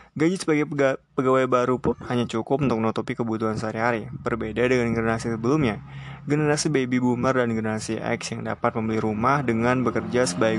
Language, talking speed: Indonesian, 160 wpm